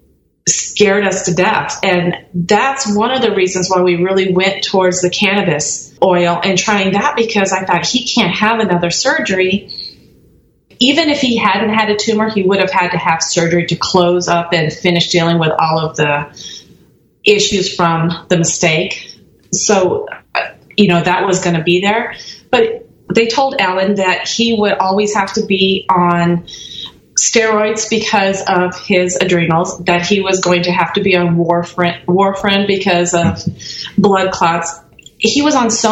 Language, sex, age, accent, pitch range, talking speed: English, female, 30-49, American, 175-210 Hz, 170 wpm